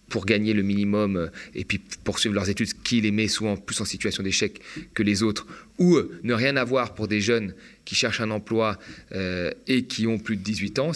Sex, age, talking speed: male, 30-49, 215 wpm